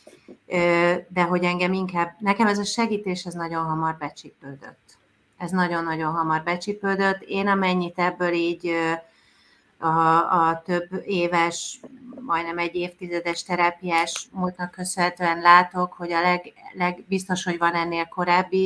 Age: 30-49